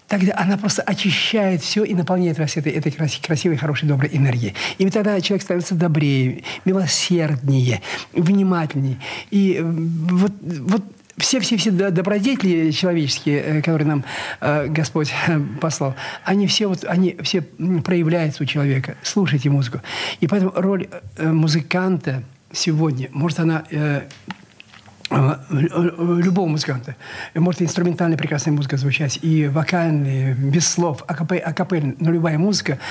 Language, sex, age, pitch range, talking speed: Russian, male, 50-69, 145-180 Hz, 110 wpm